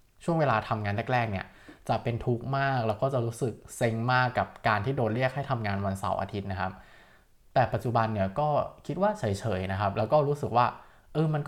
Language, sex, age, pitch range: Thai, male, 20-39, 105-140 Hz